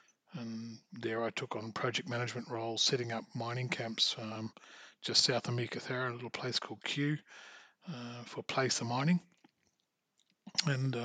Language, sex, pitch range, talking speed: English, male, 120-140 Hz, 150 wpm